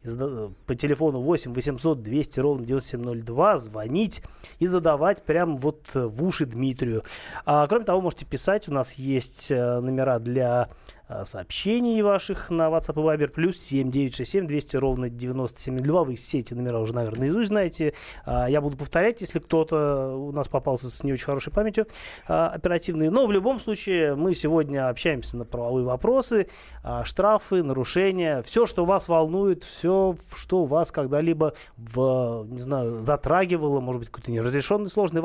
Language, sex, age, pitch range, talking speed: Russian, male, 30-49, 125-170 Hz, 145 wpm